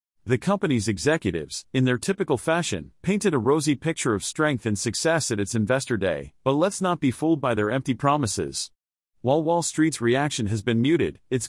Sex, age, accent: male, 40-59, American